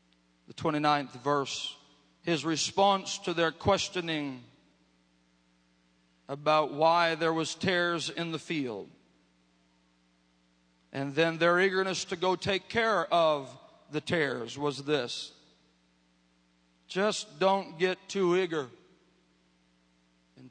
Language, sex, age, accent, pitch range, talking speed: English, male, 40-59, American, 125-175 Hz, 100 wpm